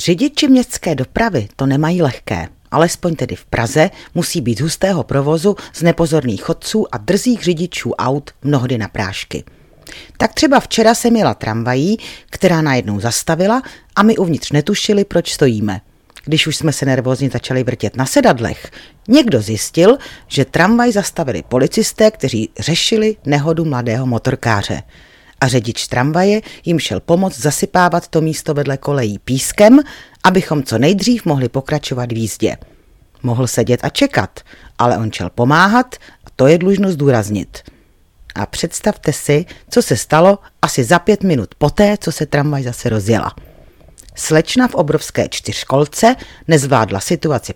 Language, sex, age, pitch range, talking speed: Czech, female, 40-59, 120-180 Hz, 145 wpm